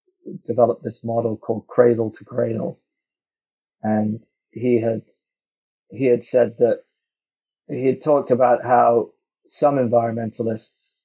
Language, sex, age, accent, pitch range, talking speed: English, male, 40-59, British, 115-135 Hz, 115 wpm